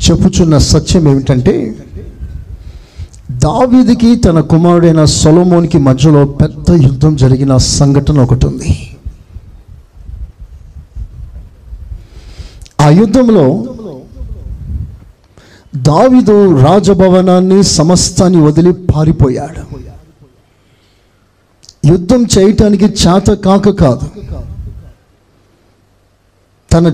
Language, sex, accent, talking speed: Telugu, male, native, 60 wpm